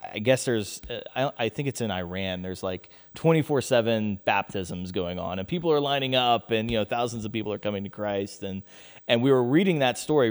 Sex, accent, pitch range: male, American, 105-135 Hz